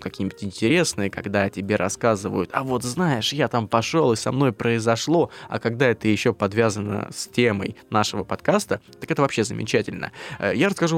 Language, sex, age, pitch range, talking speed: Russian, male, 20-39, 105-120 Hz, 165 wpm